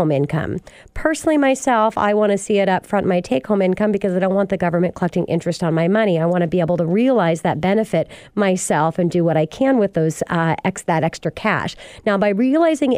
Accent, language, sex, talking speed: American, English, female, 225 wpm